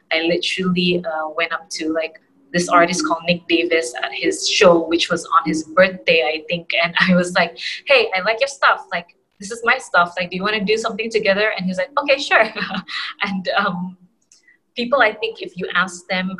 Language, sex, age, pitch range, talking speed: English, female, 20-39, 165-190 Hz, 210 wpm